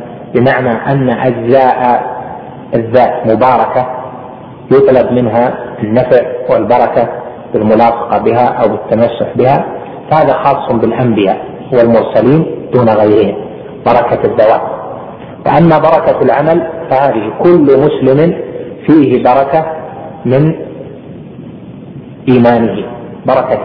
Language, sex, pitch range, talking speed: Arabic, male, 110-125 Hz, 85 wpm